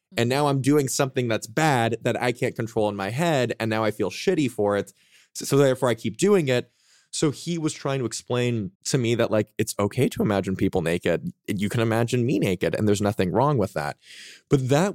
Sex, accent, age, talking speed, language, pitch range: male, American, 20-39, 225 wpm, English, 100-130 Hz